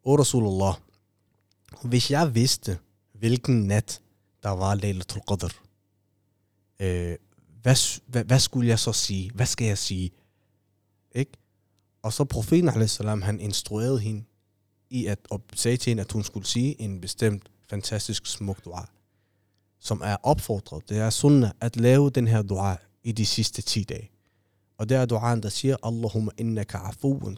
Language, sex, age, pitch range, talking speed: Danish, male, 30-49, 100-120 Hz, 150 wpm